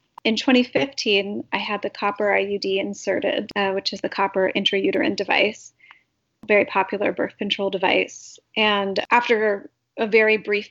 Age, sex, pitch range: 30-49, female, 195-220 Hz